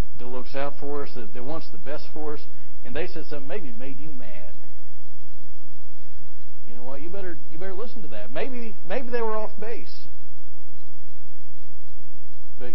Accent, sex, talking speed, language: American, male, 170 wpm, English